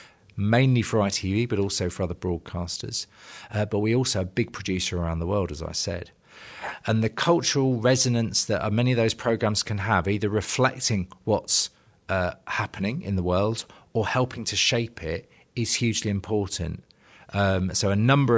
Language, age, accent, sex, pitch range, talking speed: English, 40-59, British, male, 95-120 Hz, 170 wpm